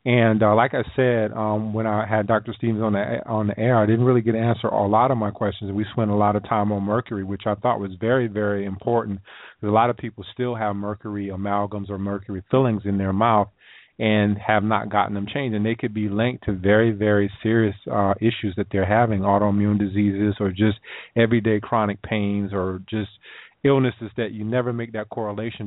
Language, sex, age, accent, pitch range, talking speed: English, male, 40-59, American, 105-115 Hz, 215 wpm